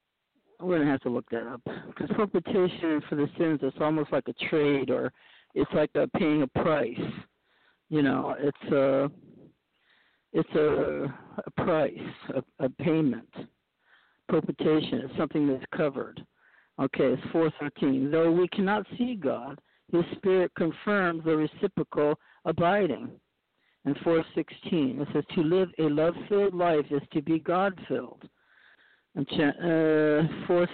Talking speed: 140 wpm